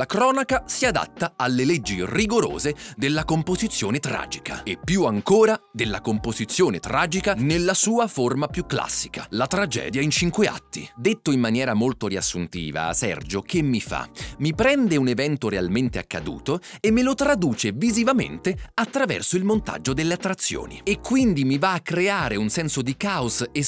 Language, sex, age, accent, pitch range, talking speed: Italian, male, 30-49, native, 135-220 Hz, 155 wpm